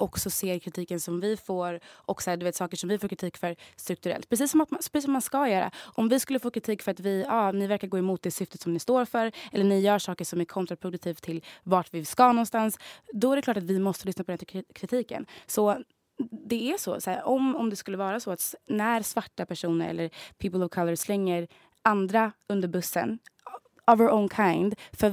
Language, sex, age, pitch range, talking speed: English, female, 20-39, 175-215 Hz, 235 wpm